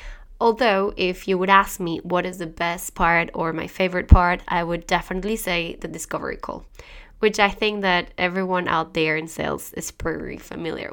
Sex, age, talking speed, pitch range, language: female, 20-39, 185 wpm, 185-235 Hz, English